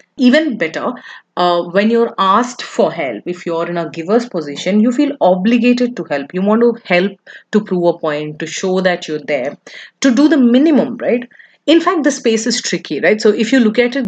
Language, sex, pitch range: English, female, 170-230 Hz